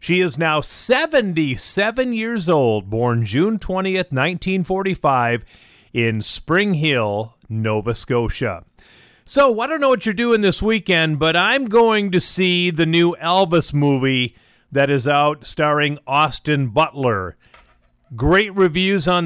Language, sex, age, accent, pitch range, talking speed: English, male, 40-59, American, 140-195 Hz, 130 wpm